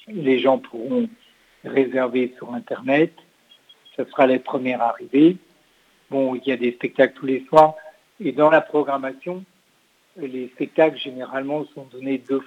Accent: French